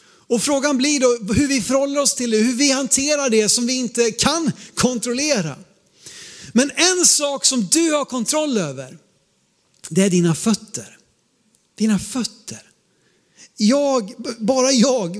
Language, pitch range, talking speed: Swedish, 215-285 Hz, 140 wpm